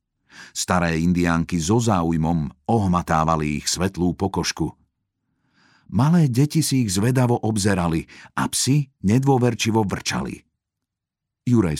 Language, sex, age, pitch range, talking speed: Slovak, male, 50-69, 85-115 Hz, 95 wpm